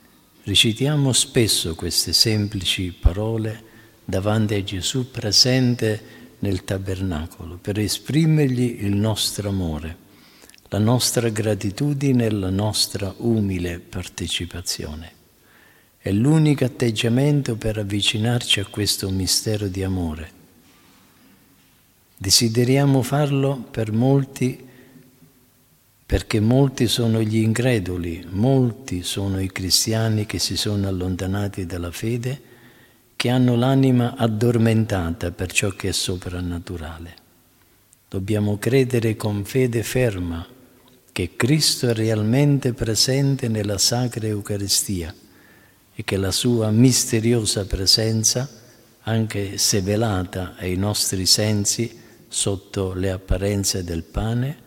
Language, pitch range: Italian, 95-120 Hz